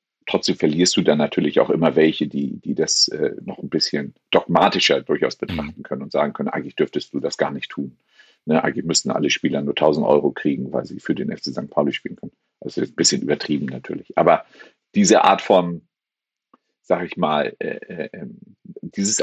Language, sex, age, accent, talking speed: German, male, 50-69, German, 195 wpm